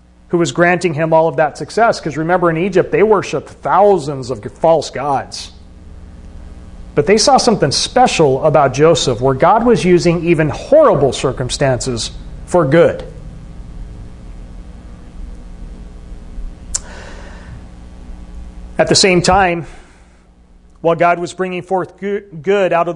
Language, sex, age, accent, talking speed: English, male, 40-59, American, 120 wpm